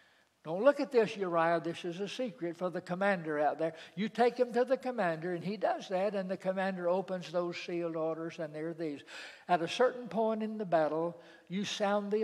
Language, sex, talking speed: English, male, 215 wpm